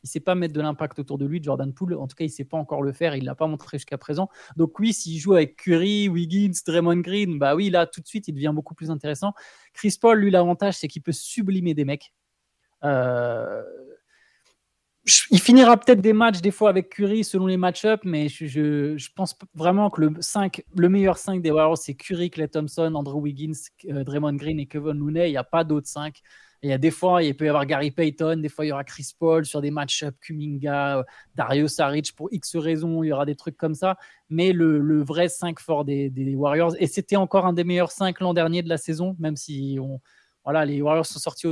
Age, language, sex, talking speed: 20-39, French, male, 245 wpm